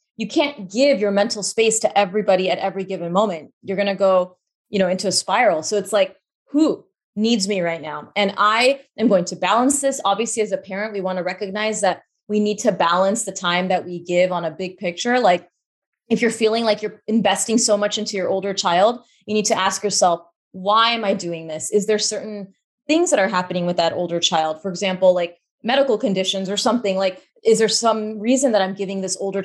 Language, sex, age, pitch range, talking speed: English, female, 20-39, 190-230 Hz, 220 wpm